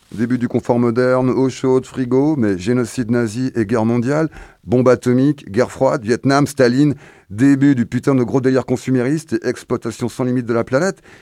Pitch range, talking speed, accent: 105-145 Hz, 175 wpm, French